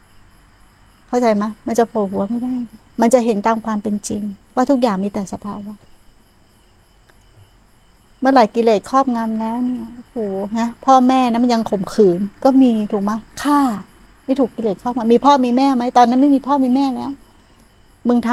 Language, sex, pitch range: Thai, female, 200-255 Hz